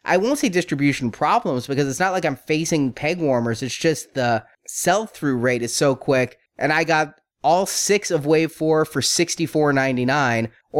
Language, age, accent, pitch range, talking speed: English, 30-49, American, 130-165 Hz, 180 wpm